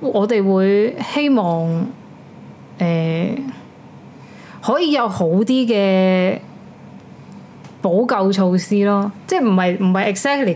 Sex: female